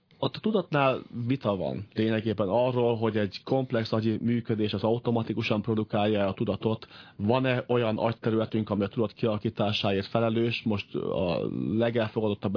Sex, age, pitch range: male, 40-59, 105-120 Hz